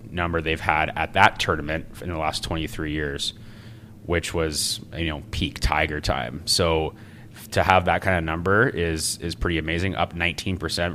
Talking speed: 175 wpm